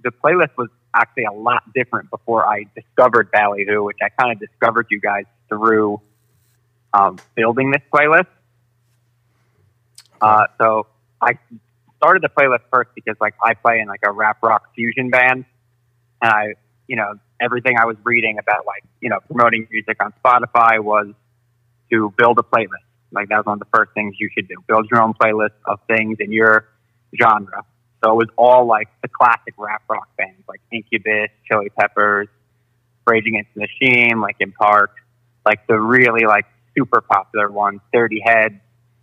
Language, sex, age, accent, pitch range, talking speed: English, male, 30-49, American, 110-120 Hz, 170 wpm